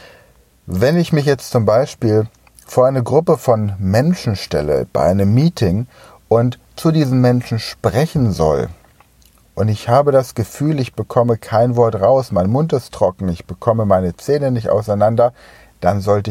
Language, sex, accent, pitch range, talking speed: German, male, German, 85-125 Hz, 160 wpm